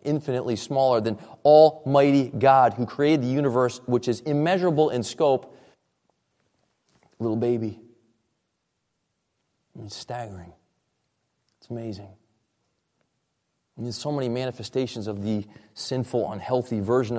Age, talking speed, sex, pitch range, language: 30-49, 100 wpm, male, 110-140 Hz, English